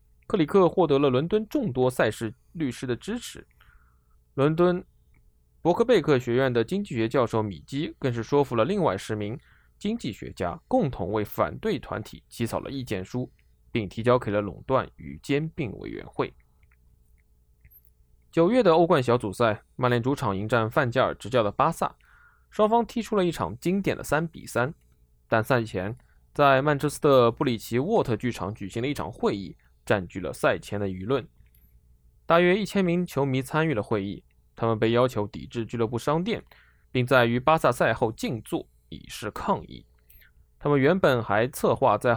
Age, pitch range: 20-39, 95-145 Hz